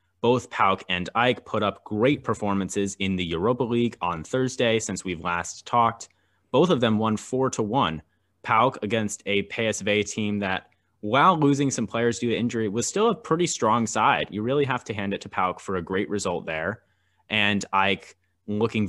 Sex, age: male, 20-39